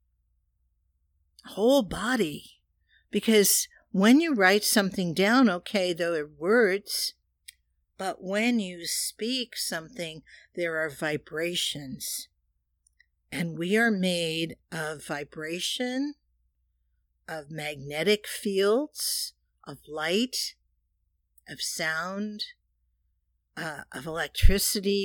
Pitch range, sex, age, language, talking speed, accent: 150-215 Hz, female, 50-69, English, 85 wpm, American